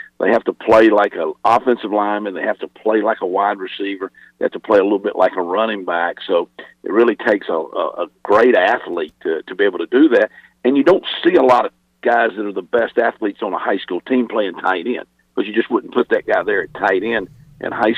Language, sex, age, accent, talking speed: English, male, 50-69, American, 255 wpm